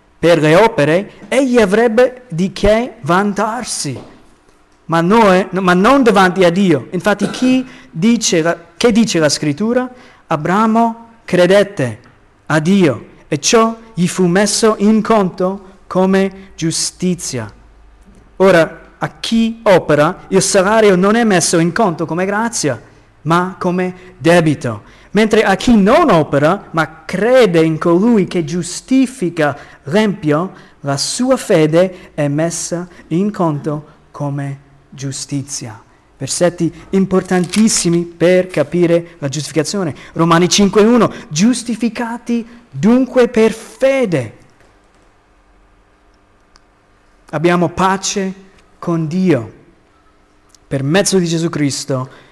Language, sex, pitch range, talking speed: Italian, male, 150-205 Hz, 105 wpm